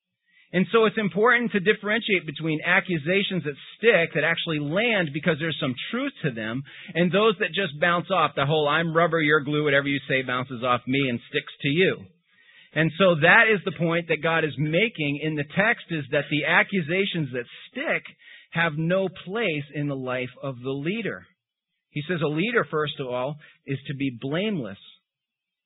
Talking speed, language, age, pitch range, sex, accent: 185 wpm, English, 40-59, 140-185 Hz, male, American